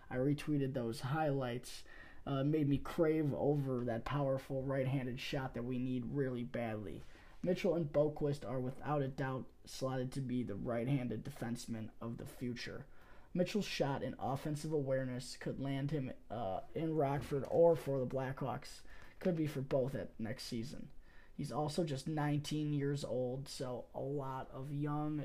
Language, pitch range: English, 135-165 Hz